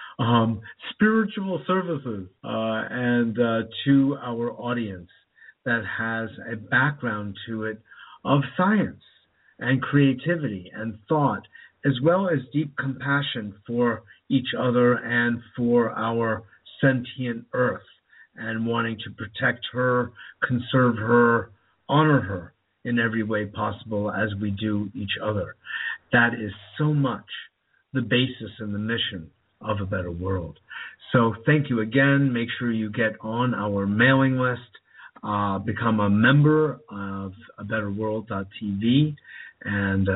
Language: English